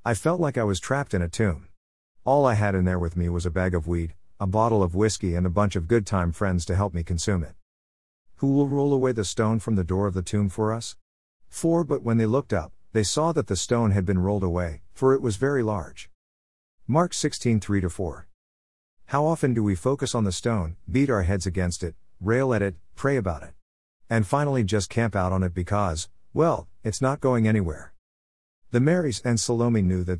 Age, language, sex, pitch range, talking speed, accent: 50-69, English, male, 85-120 Hz, 220 wpm, American